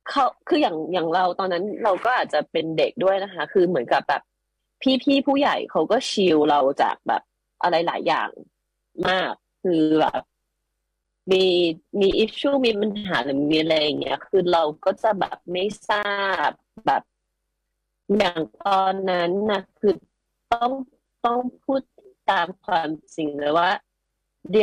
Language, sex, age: Thai, female, 30-49